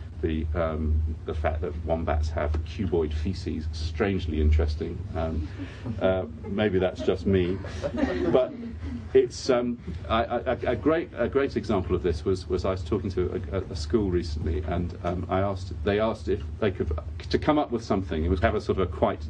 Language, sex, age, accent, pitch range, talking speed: English, male, 40-59, British, 80-95 Hz, 195 wpm